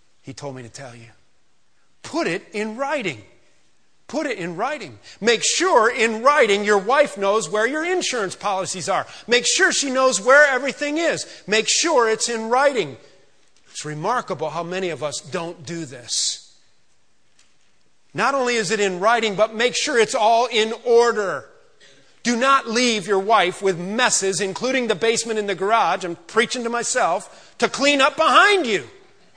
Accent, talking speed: American, 170 wpm